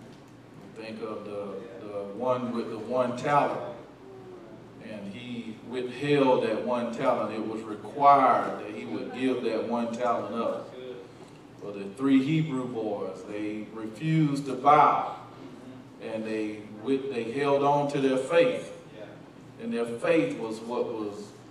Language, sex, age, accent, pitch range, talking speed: English, male, 40-59, American, 110-145 Hz, 135 wpm